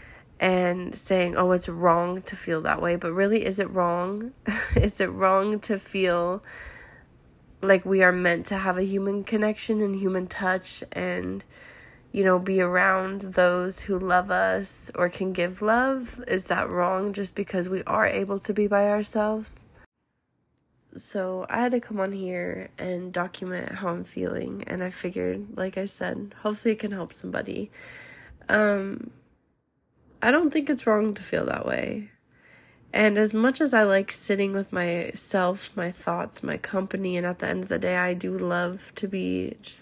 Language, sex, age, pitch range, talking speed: English, female, 20-39, 175-200 Hz, 175 wpm